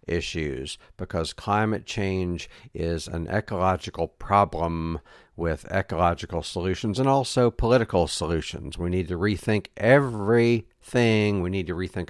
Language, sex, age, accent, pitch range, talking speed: English, male, 60-79, American, 85-105 Hz, 120 wpm